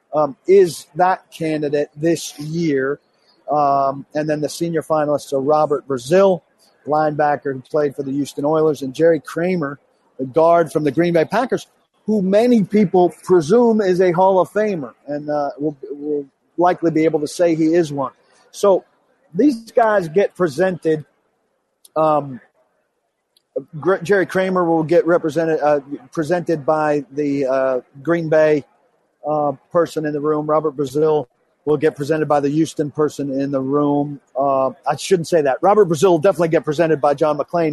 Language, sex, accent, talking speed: English, male, American, 160 wpm